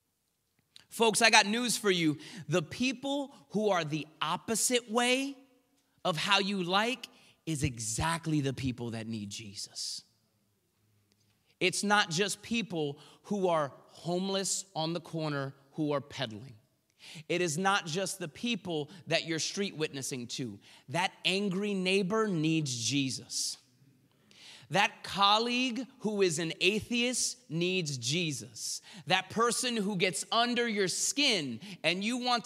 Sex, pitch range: male, 145-230 Hz